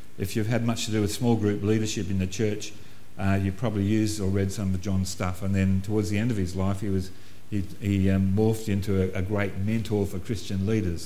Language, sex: English, male